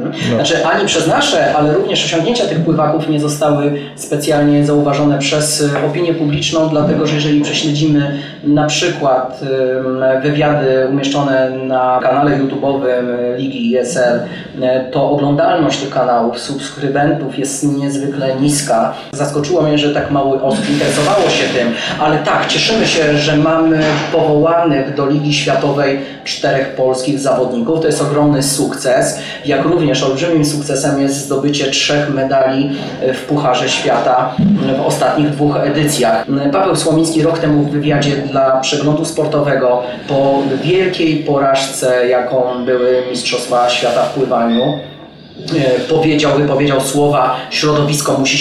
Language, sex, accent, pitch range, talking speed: Polish, male, native, 130-150 Hz, 125 wpm